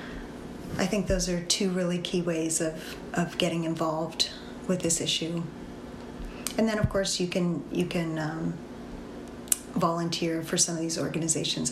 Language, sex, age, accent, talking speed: English, female, 30-49, American, 155 wpm